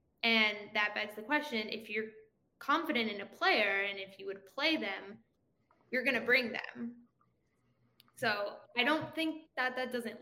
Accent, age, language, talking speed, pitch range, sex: American, 10-29, English, 170 wpm, 215-255 Hz, female